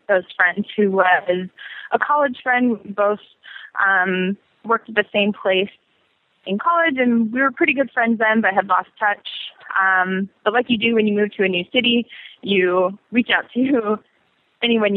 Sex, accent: female, American